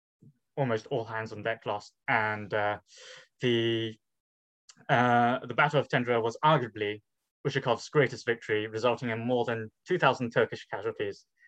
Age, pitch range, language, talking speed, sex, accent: 20-39, 110-145 Hz, English, 135 wpm, male, British